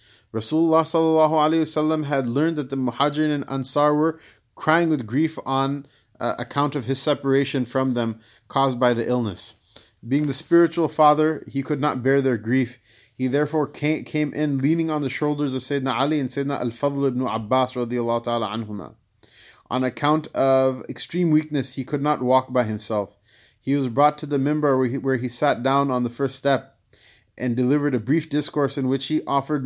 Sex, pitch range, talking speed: male, 120-150 Hz, 175 wpm